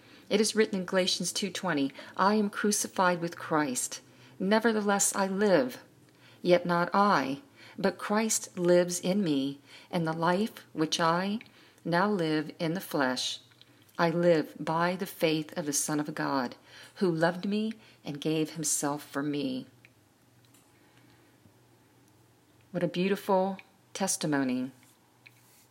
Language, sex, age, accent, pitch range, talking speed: English, female, 40-59, American, 150-190 Hz, 125 wpm